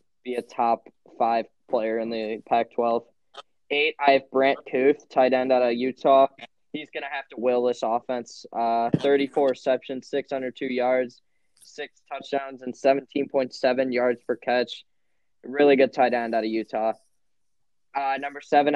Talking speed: 155 wpm